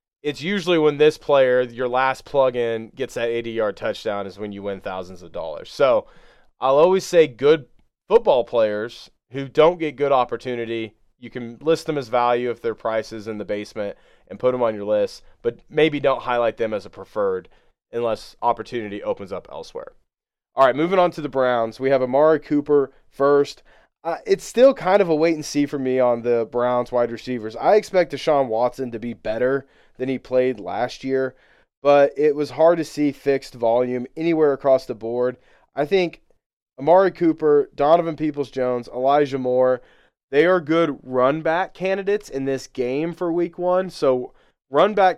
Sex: male